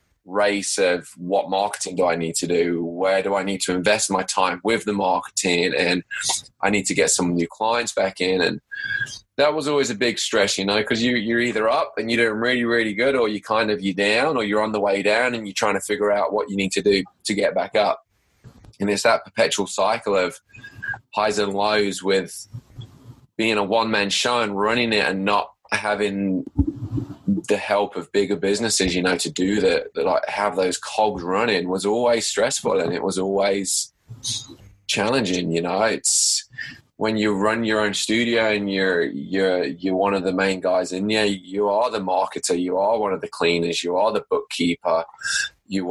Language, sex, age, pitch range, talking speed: English, male, 20-39, 95-110 Hz, 205 wpm